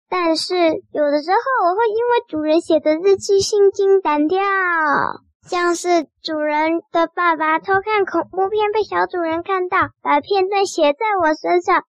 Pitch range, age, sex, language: 315-395 Hz, 10-29, male, Chinese